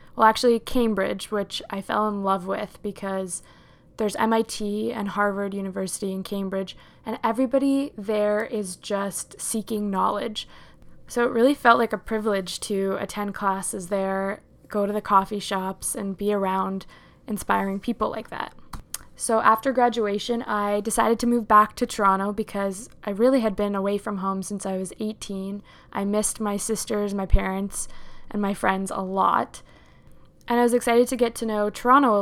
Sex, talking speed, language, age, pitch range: female, 170 wpm, English, 20-39, 195-225 Hz